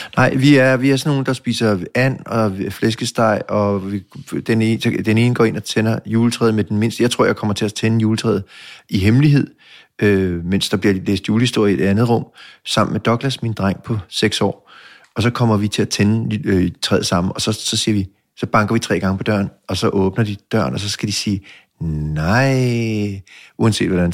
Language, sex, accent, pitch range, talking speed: English, male, Danish, 100-115 Hz, 220 wpm